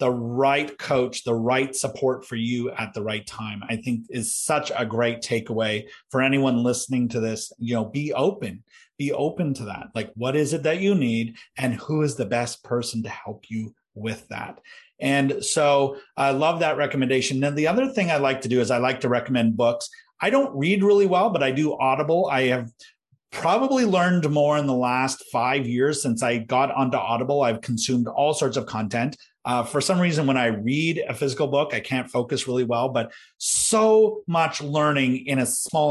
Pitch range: 120-150 Hz